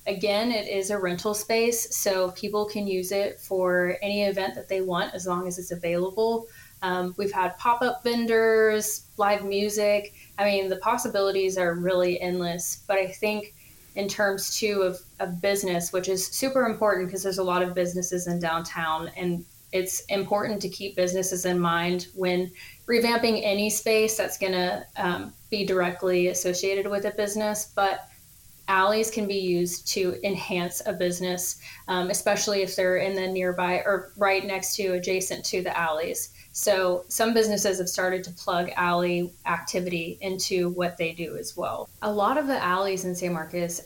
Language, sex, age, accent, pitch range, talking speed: English, female, 20-39, American, 180-205 Hz, 170 wpm